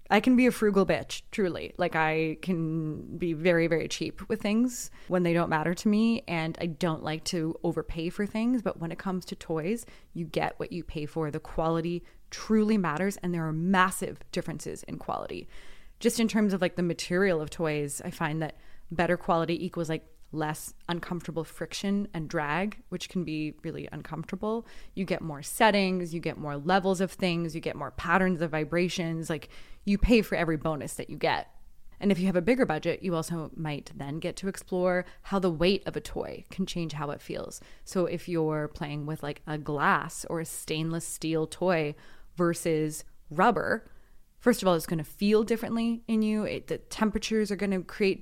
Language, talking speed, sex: English, 200 wpm, female